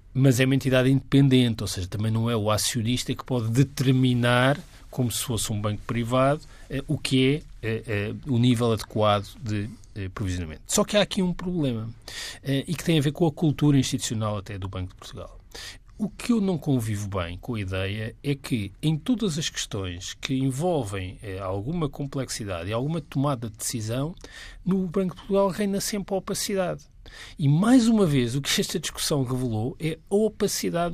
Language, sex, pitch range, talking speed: Portuguese, male, 115-175 Hz, 180 wpm